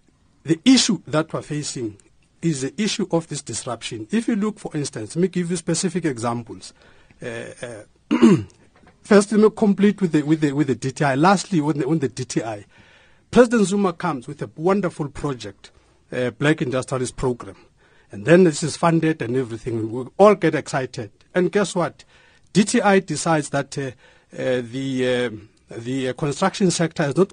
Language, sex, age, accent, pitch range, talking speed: English, male, 50-69, South African, 140-195 Hz, 170 wpm